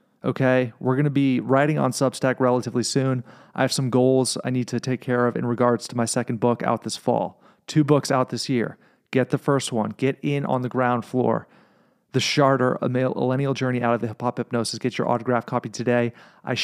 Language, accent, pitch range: English, American, 120-140 Hz